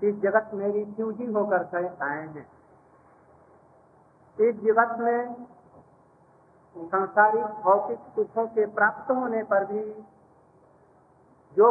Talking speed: 90 wpm